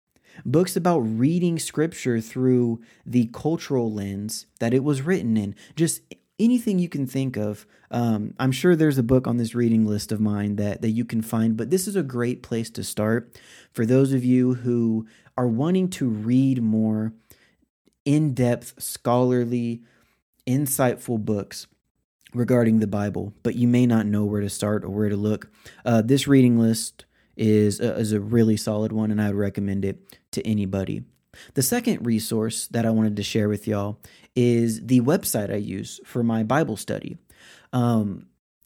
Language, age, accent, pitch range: English, 30-49, American, 110-140 Hz